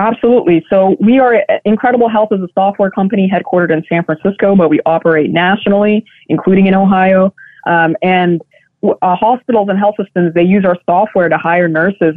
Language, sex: English, female